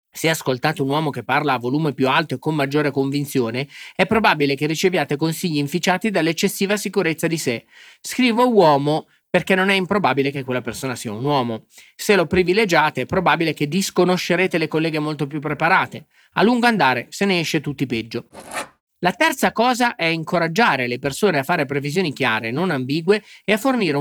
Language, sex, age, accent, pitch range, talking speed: Italian, male, 30-49, native, 140-195 Hz, 180 wpm